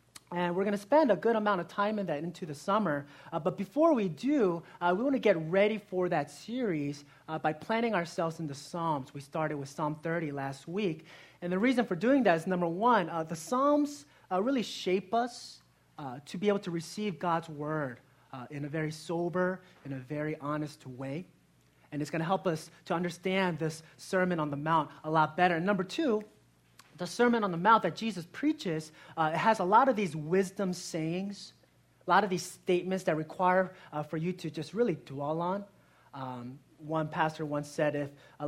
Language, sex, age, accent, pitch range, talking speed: English, male, 30-49, American, 150-190 Hz, 210 wpm